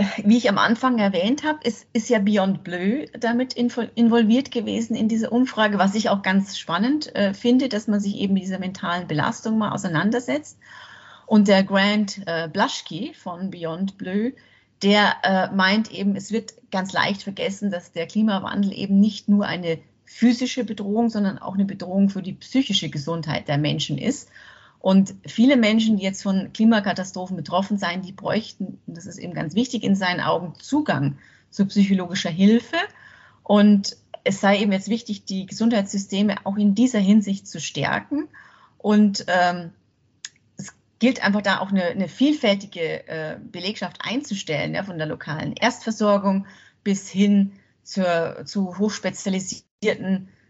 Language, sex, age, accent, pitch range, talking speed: German, female, 30-49, German, 185-225 Hz, 150 wpm